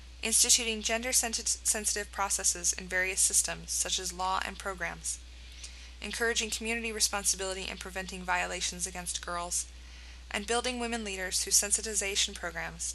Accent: American